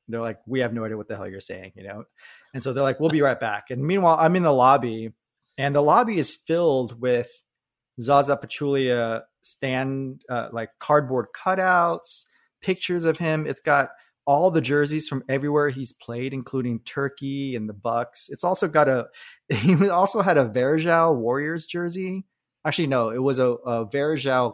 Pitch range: 115-145 Hz